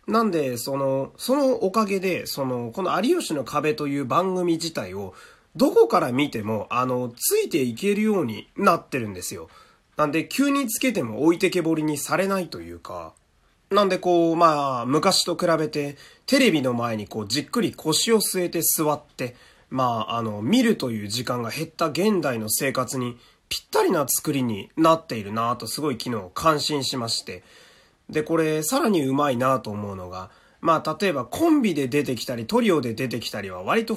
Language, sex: Japanese, male